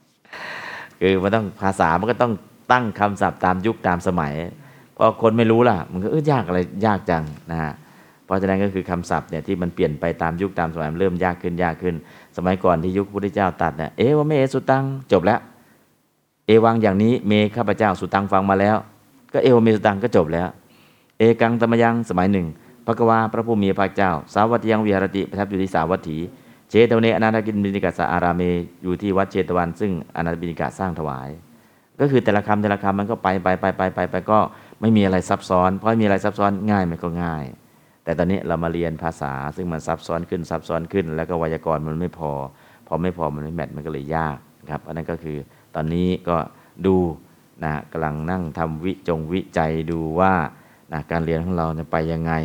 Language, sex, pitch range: Thai, male, 80-105 Hz